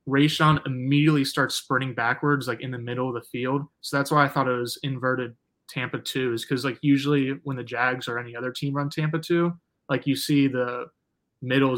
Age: 20-39